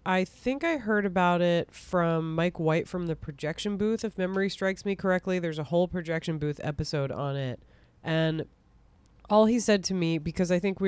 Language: English